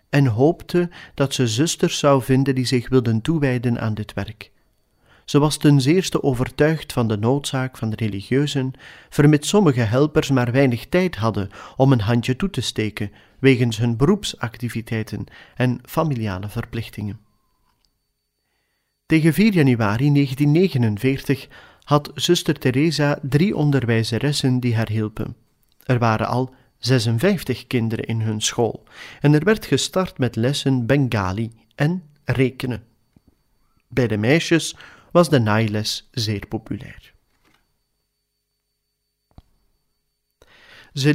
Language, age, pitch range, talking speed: Dutch, 40-59, 115-145 Hz, 120 wpm